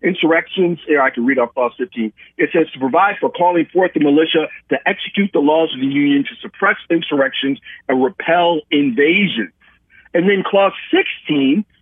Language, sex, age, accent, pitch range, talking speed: English, male, 50-69, American, 180-275 Hz, 175 wpm